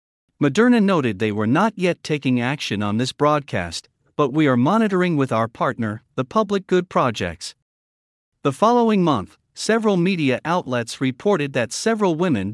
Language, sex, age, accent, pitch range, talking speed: English, male, 50-69, American, 115-175 Hz, 155 wpm